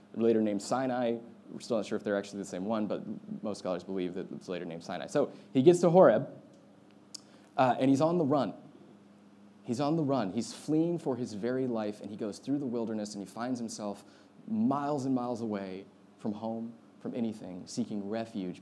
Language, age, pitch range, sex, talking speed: English, 20-39, 100-120 Hz, male, 205 wpm